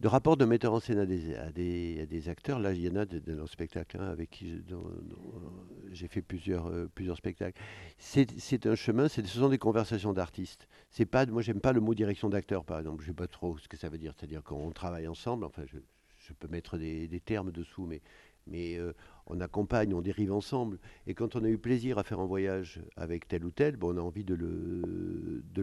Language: French